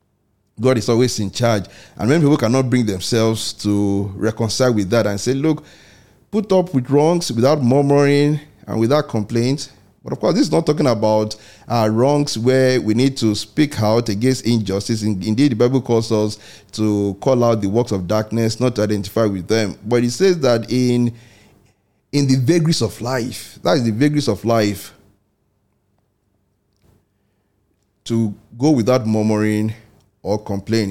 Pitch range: 105-130 Hz